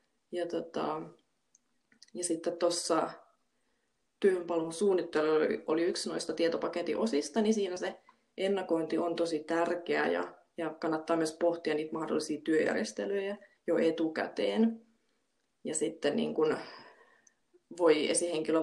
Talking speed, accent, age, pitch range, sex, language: 105 wpm, native, 20-39, 165-205 Hz, female, Finnish